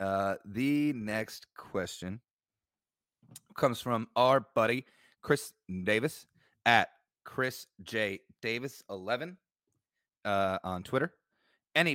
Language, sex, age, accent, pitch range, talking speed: English, male, 30-49, American, 100-125 Hz, 80 wpm